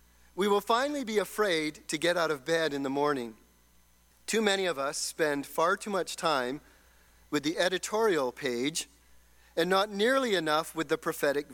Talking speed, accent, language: 170 wpm, American, English